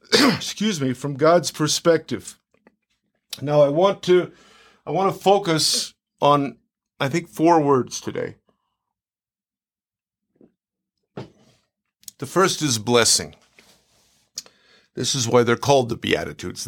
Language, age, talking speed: English, 50-69, 110 wpm